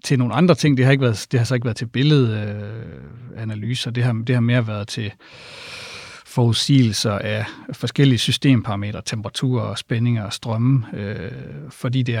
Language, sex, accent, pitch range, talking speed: Danish, male, native, 115-135 Hz, 165 wpm